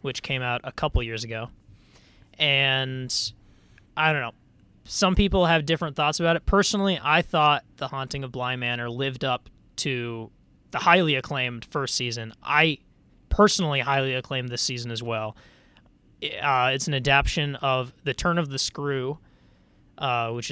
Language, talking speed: English, 160 wpm